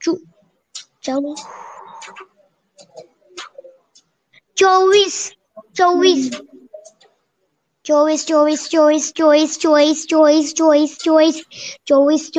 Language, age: English, 20-39